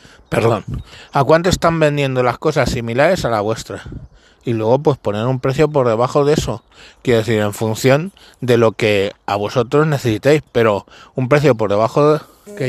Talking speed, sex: 175 wpm, male